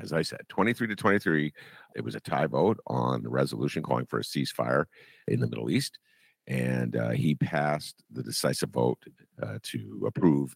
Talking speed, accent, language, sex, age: 180 wpm, American, English, male, 50-69